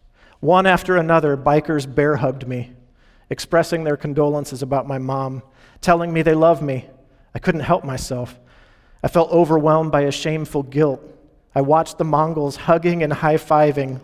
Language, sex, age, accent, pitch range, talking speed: English, male, 40-59, American, 130-160 Hz, 150 wpm